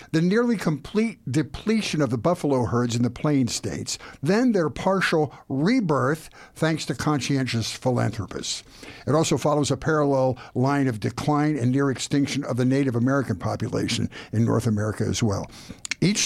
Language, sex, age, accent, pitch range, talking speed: English, male, 60-79, American, 130-175 Hz, 155 wpm